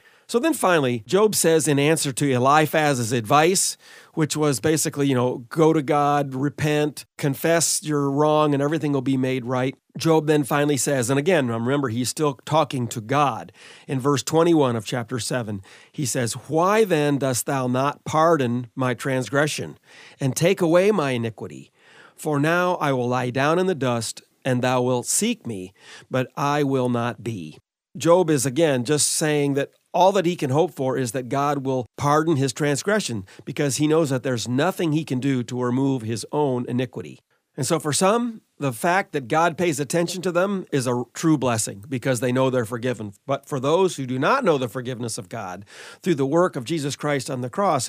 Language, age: English, 40-59